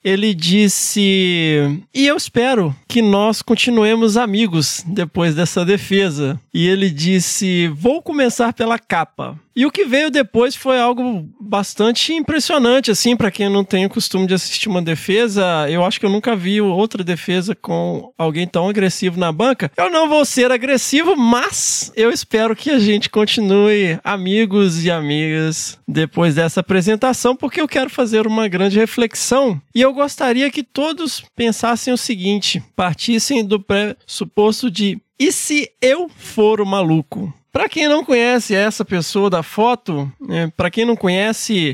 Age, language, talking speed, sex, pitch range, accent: 20-39, Portuguese, 155 wpm, male, 180-250 Hz, Brazilian